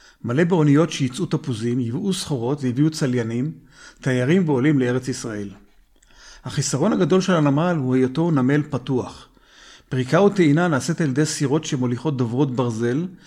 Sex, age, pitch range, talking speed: male, 50-69, 125-170 Hz, 130 wpm